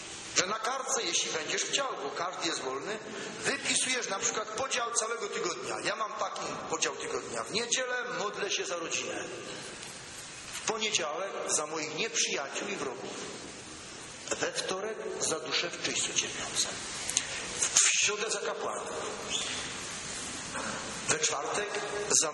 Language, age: English, 40-59